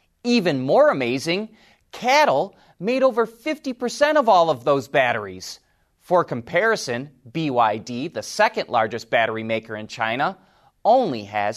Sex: male